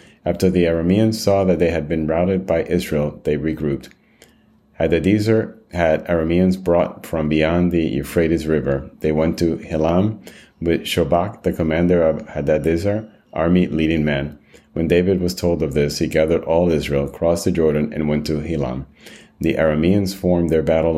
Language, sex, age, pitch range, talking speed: English, male, 30-49, 75-85 Hz, 165 wpm